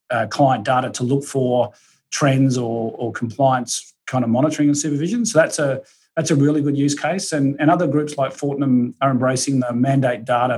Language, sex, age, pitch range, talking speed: English, male, 40-59, 120-145 Hz, 200 wpm